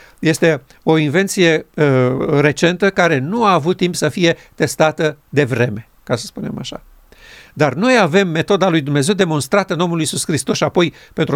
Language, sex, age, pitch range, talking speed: Romanian, male, 50-69, 150-195 Hz, 165 wpm